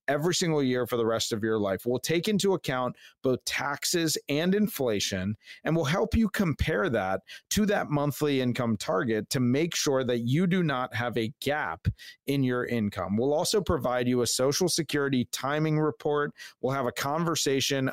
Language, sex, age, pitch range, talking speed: English, male, 40-59, 120-155 Hz, 180 wpm